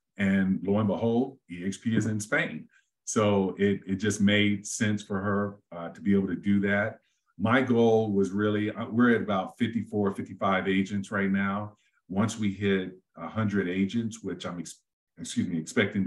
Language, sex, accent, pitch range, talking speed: English, male, American, 95-105 Hz, 165 wpm